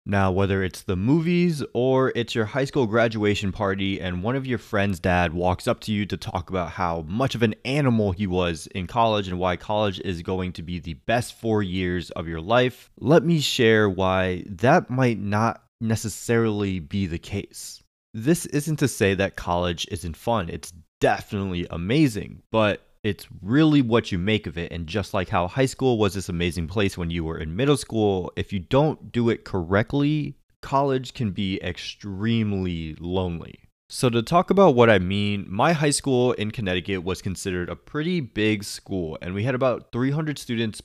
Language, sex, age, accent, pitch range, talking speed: English, male, 20-39, American, 90-120 Hz, 190 wpm